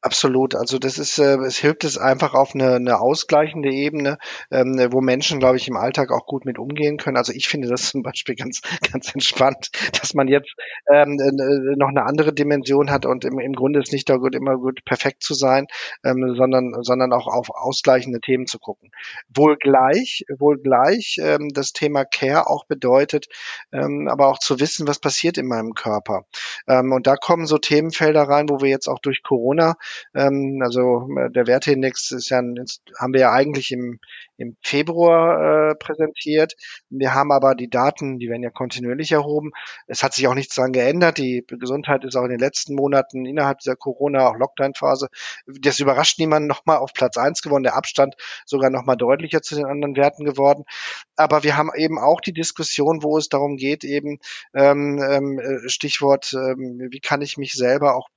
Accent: German